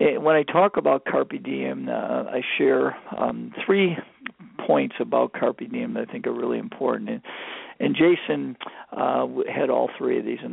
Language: English